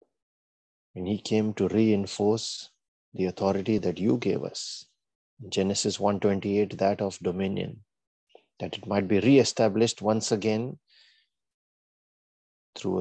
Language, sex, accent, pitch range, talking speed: English, male, Indian, 95-110 Hz, 110 wpm